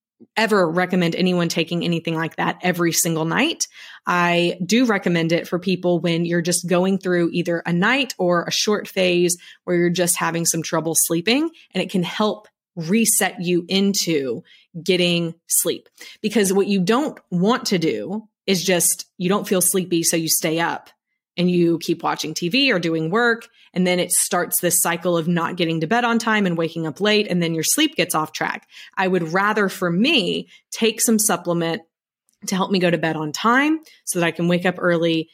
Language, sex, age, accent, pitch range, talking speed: English, female, 20-39, American, 170-210 Hz, 195 wpm